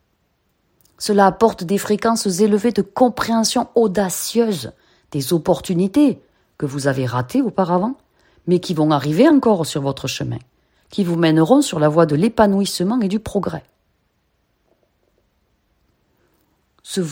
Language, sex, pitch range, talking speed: French, female, 165-220 Hz, 125 wpm